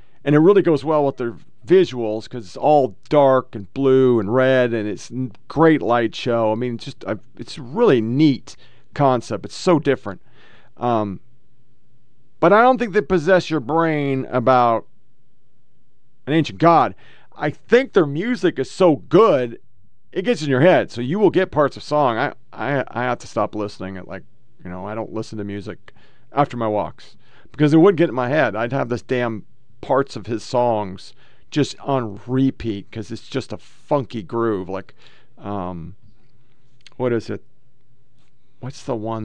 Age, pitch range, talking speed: 40-59, 110-140 Hz, 180 wpm